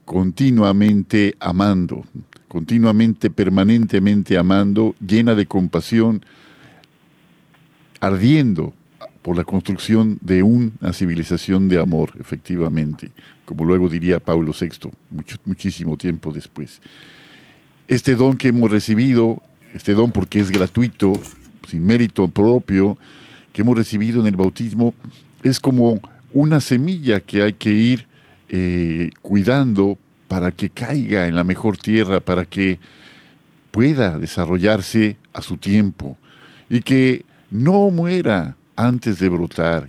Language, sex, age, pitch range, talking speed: Spanish, male, 50-69, 95-120 Hz, 115 wpm